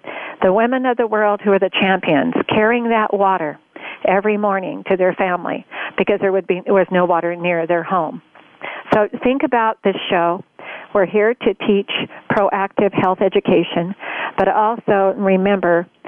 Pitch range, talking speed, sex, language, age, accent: 185-210 Hz, 165 wpm, female, English, 50-69, American